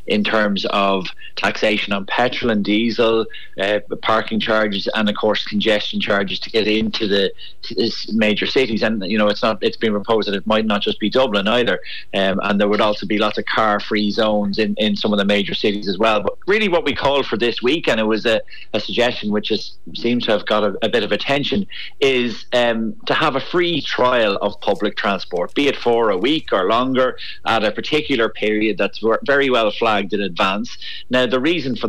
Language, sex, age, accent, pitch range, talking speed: English, male, 30-49, Irish, 105-125 Hz, 210 wpm